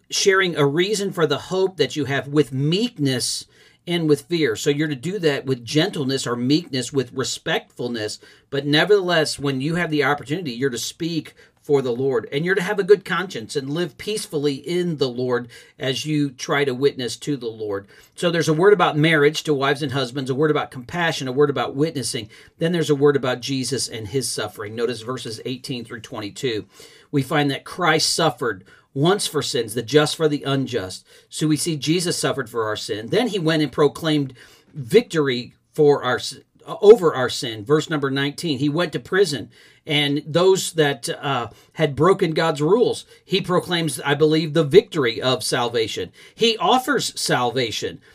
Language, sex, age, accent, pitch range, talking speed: English, male, 40-59, American, 135-165 Hz, 185 wpm